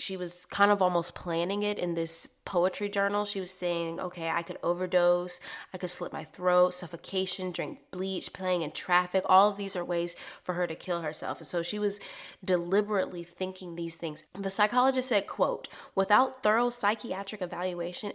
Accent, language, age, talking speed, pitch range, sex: American, English, 20-39, 180 wpm, 180-220 Hz, female